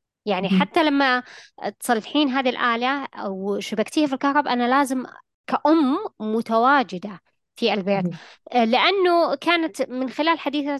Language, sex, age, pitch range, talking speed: Arabic, female, 20-39, 215-275 Hz, 115 wpm